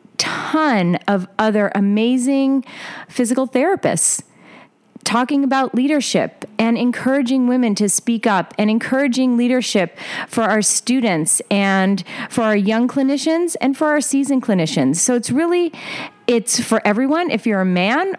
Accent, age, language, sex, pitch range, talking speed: American, 30-49, English, female, 195-270 Hz, 135 wpm